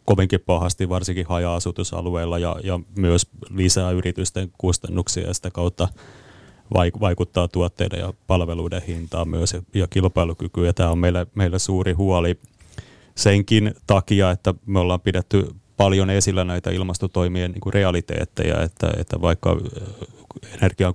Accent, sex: native, male